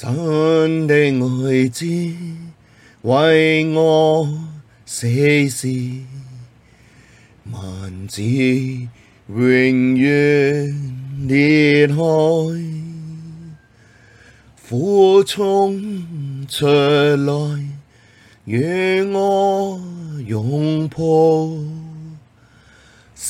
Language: Chinese